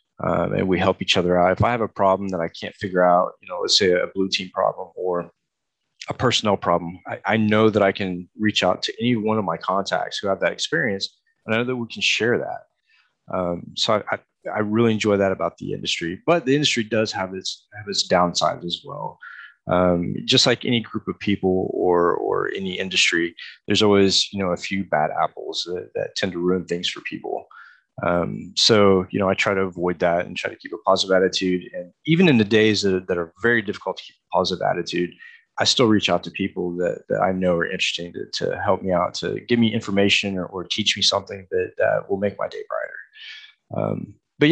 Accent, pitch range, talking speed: American, 90-110 Hz, 230 wpm